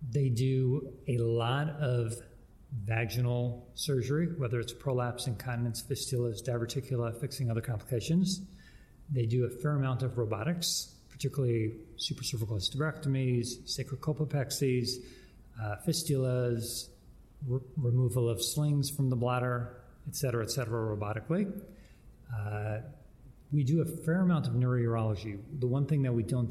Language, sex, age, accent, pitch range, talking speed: English, male, 40-59, American, 115-135 Hz, 125 wpm